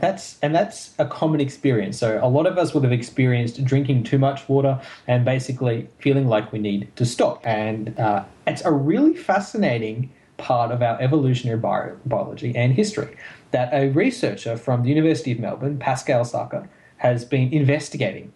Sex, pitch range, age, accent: male, 115-145 Hz, 10-29, Australian